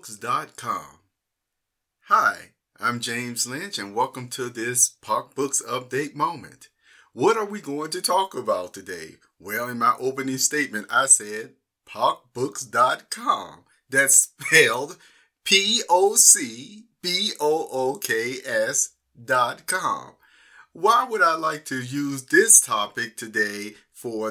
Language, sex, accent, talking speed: English, male, American, 100 wpm